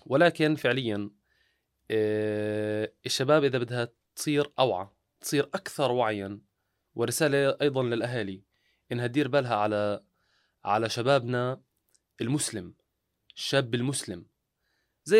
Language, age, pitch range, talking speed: Arabic, 20-39, 120-175 Hz, 95 wpm